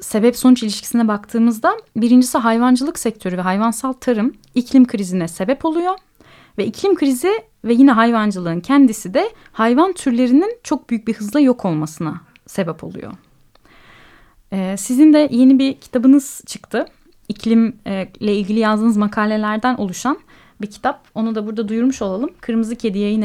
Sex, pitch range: female, 200-255 Hz